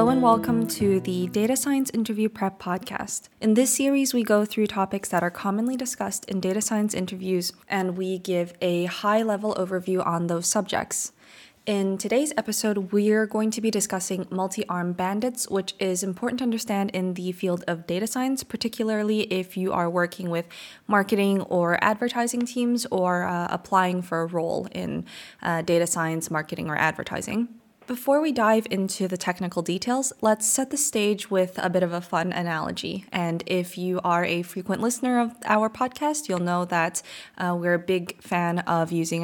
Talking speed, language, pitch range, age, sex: 180 wpm, English, 175-220 Hz, 20-39, female